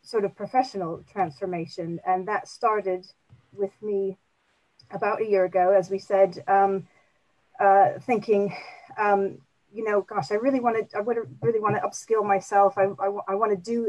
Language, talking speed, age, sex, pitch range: English, 165 wpm, 40-59, female, 180-210 Hz